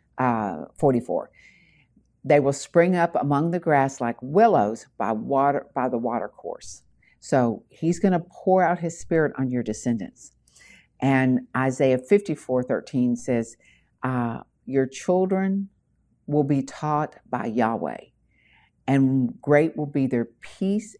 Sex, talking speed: female, 135 wpm